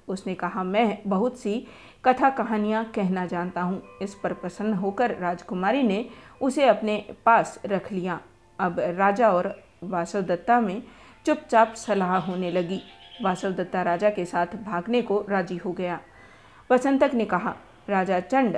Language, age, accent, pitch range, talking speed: Hindi, 50-69, native, 185-230 Hz, 140 wpm